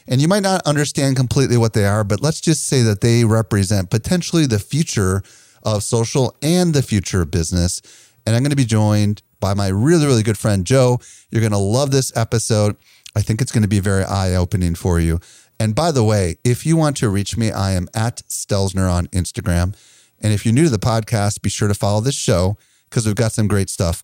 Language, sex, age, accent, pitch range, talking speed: English, male, 30-49, American, 95-130 Hz, 225 wpm